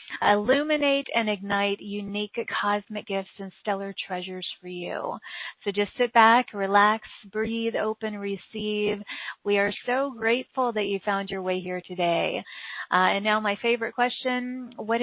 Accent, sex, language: American, female, English